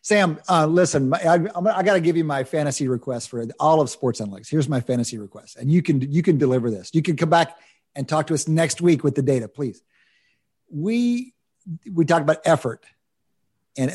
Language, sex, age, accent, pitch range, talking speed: English, male, 50-69, American, 130-175 Hz, 210 wpm